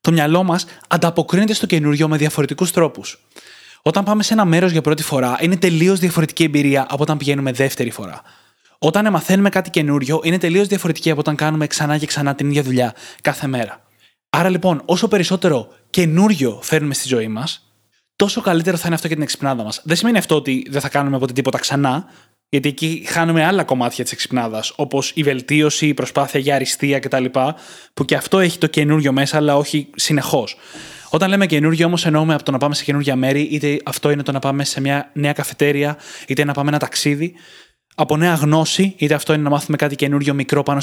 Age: 20-39